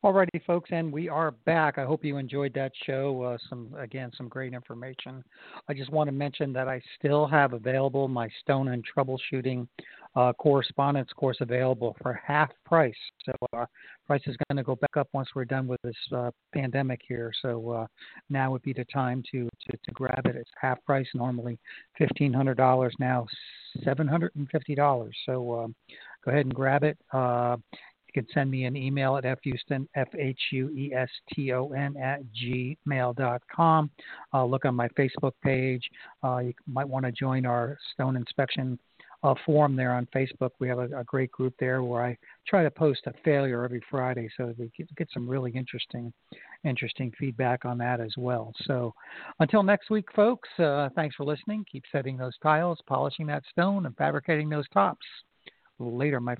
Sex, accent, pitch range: male, American, 125-145 Hz